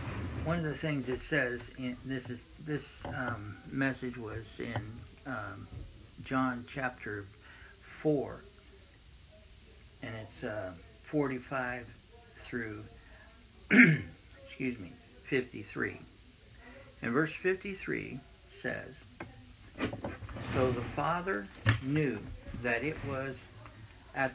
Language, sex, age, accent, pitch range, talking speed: English, male, 60-79, American, 105-135 Hz, 95 wpm